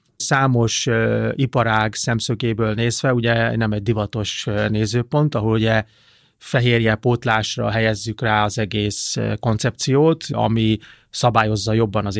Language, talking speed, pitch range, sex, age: Hungarian, 105 wpm, 110-125 Hz, male, 30-49